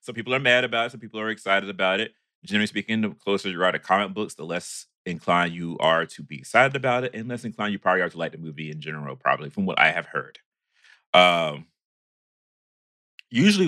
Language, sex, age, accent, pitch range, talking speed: English, male, 30-49, American, 85-125 Hz, 225 wpm